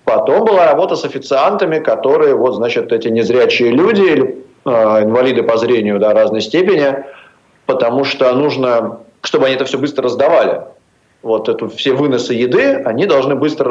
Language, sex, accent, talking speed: Russian, male, native, 155 wpm